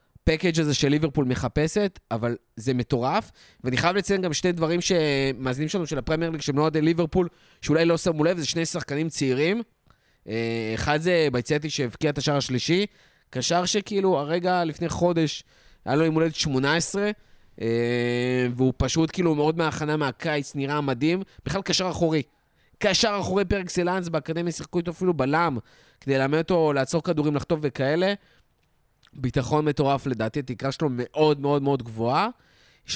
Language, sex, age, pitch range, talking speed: Hebrew, male, 20-39, 130-165 Hz, 145 wpm